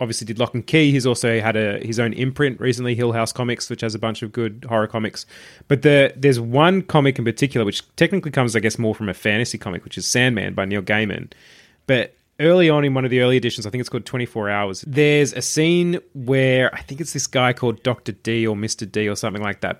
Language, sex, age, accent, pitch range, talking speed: English, male, 20-39, Australian, 110-135 Hz, 250 wpm